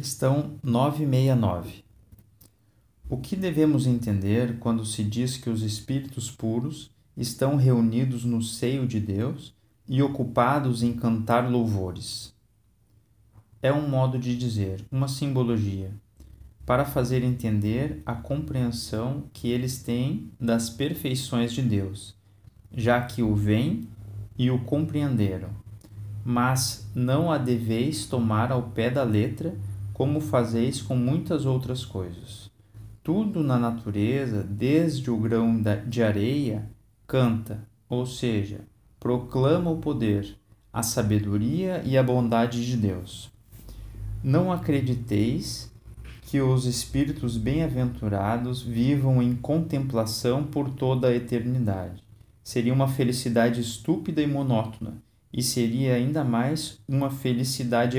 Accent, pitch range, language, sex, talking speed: Brazilian, 110-130 Hz, Portuguese, male, 115 wpm